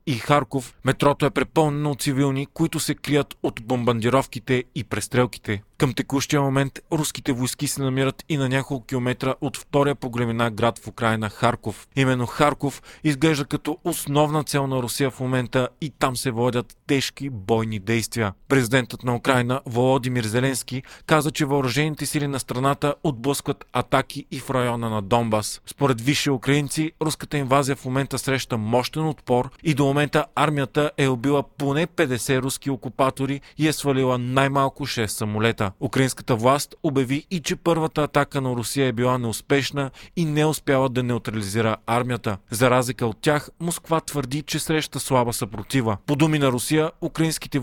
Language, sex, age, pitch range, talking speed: Bulgarian, male, 40-59, 125-145 Hz, 160 wpm